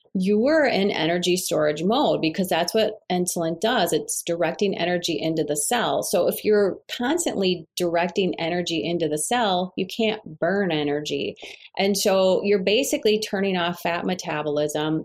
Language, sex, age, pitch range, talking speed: English, female, 30-49, 170-220 Hz, 150 wpm